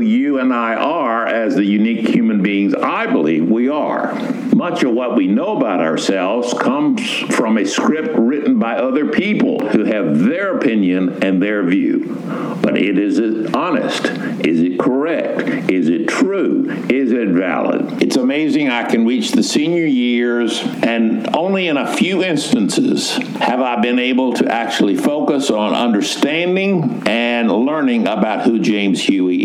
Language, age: English, 60-79